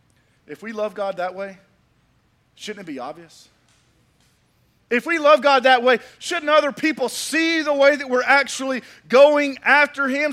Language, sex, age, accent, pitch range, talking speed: English, male, 40-59, American, 200-280 Hz, 165 wpm